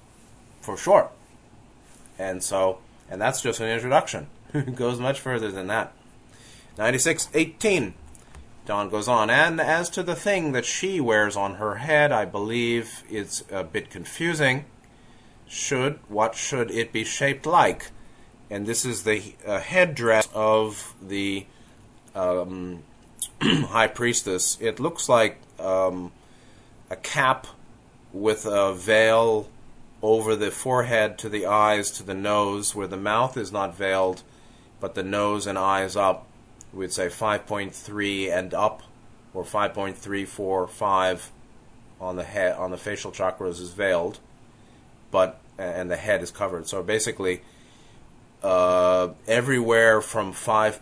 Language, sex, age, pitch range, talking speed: English, male, 30-49, 100-120 Hz, 140 wpm